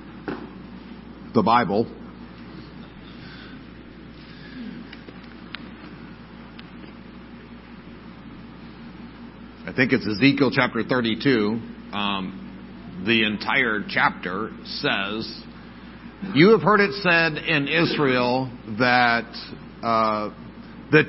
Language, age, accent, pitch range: English, 50-69, American, 120-170 Hz